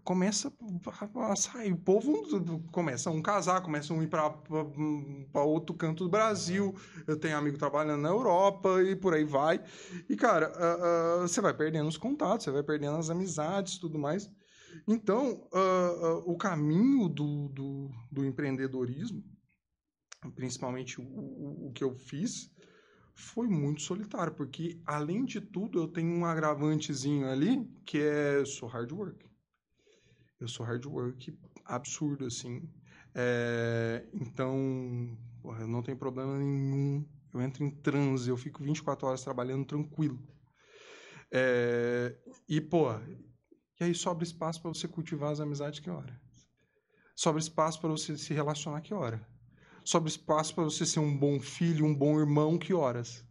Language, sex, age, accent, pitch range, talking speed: Portuguese, male, 20-39, Brazilian, 135-175 Hz, 155 wpm